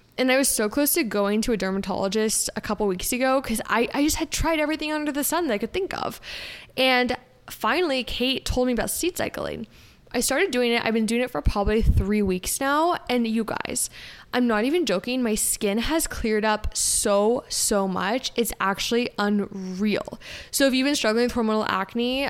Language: English